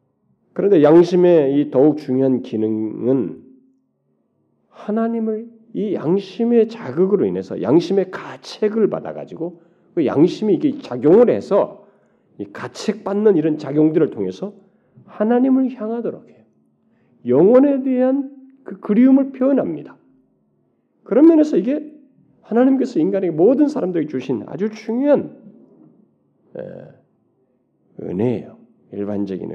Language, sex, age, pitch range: Korean, male, 40-59, 120-195 Hz